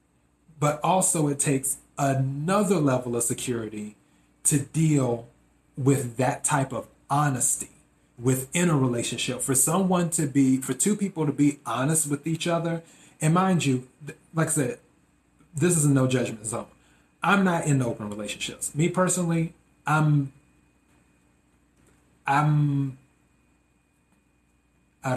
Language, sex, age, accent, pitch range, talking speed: English, male, 30-49, American, 105-150 Hz, 125 wpm